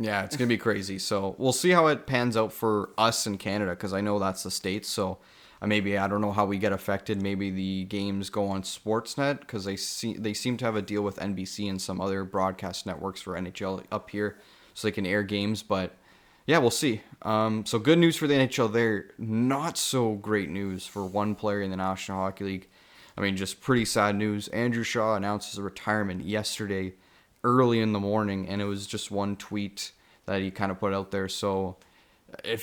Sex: male